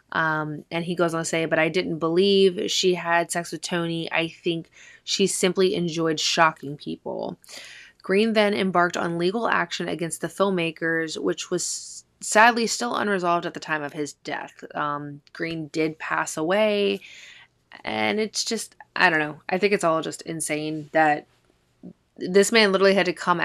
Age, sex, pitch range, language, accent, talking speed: 20-39, female, 160-200 Hz, English, American, 170 wpm